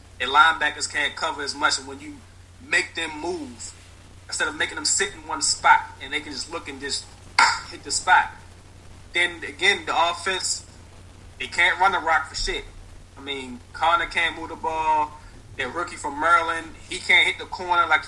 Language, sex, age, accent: English, male, 30-49, American